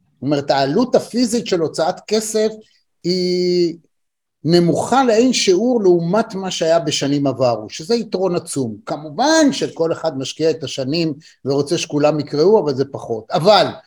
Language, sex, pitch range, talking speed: Hebrew, male, 150-200 Hz, 140 wpm